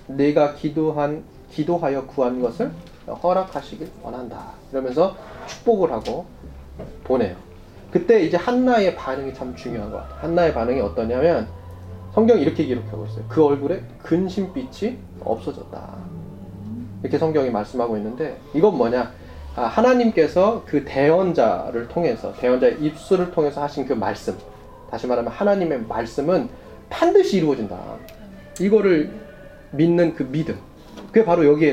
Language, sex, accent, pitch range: Korean, male, native, 120-185 Hz